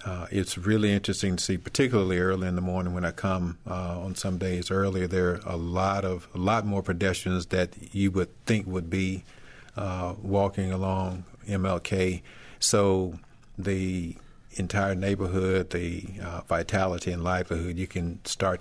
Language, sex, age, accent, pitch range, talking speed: English, male, 50-69, American, 90-100 Hz, 160 wpm